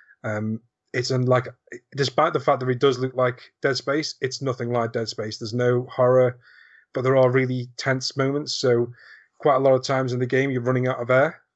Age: 30-49